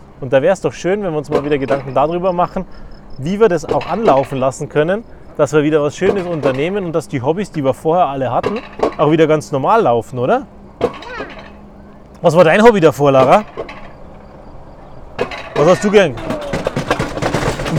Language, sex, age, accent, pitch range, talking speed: German, male, 30-49, German, 145-185 Hz, 175 wpm